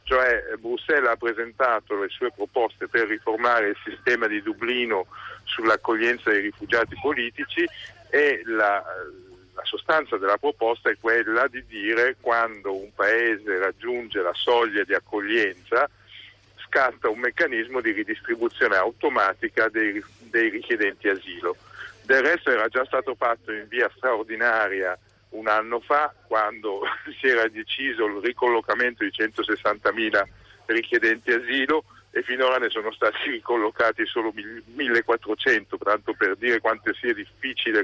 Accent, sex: native, male